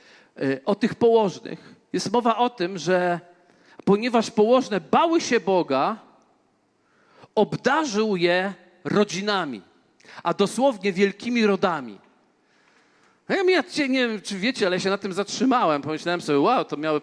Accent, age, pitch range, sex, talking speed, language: native, 40-59, 175-230 Hz, male, 125 wpm, Polish